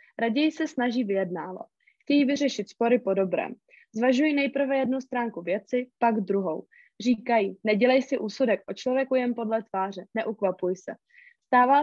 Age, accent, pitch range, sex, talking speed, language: 20-39, native, 225-270 Hz, female, 140 wpm, Czech